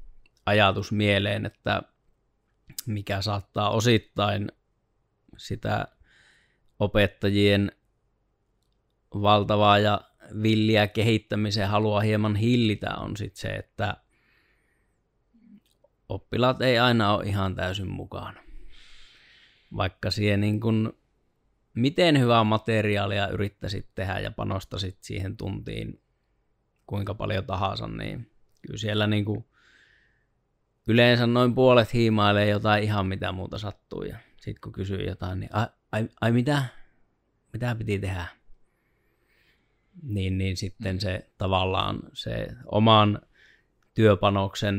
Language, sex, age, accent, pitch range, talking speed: Finnish, male, 20-39, native, 100-115 Hz, 100 wpm